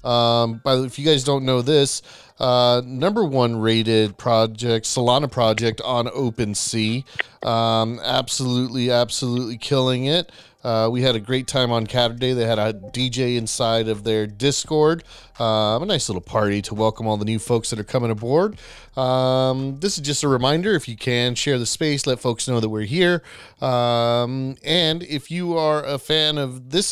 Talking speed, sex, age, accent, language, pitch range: 185 wpm, male, 30-49, American, English, 115-140 Hz